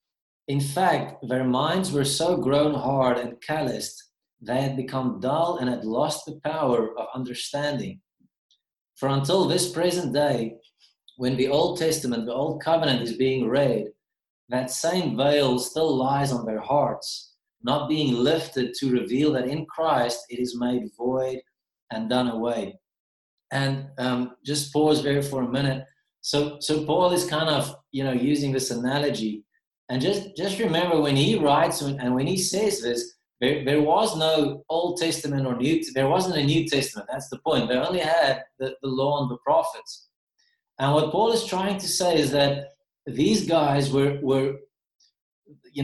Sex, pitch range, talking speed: male, 130-165 Hz, 170 wpm